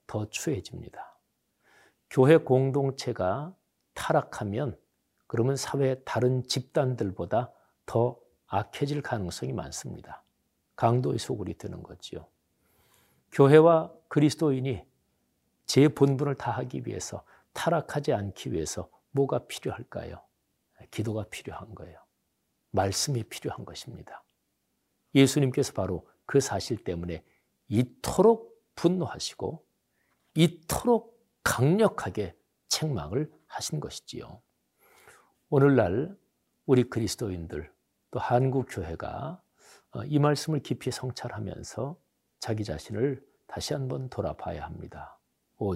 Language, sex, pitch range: Korean, male, 110-150 Hz